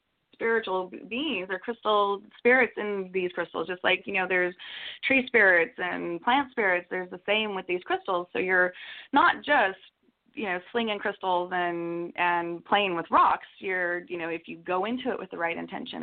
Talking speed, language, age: 185 wpm, English, 20-39